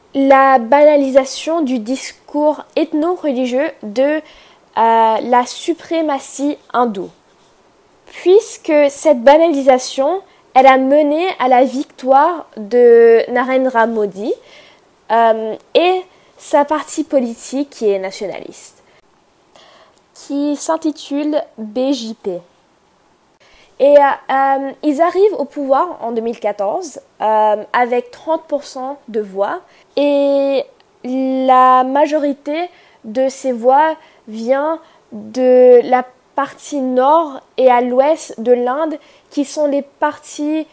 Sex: female